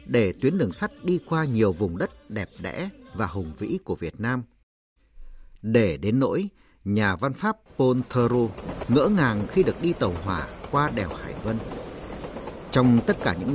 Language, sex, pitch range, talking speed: Vietnamese, male, 105-150 Hz, 175 wpm